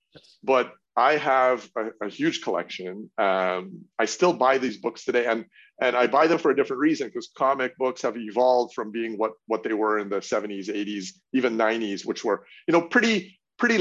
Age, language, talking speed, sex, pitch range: 30-49, English, 200 wpm, male, 110-165 Hz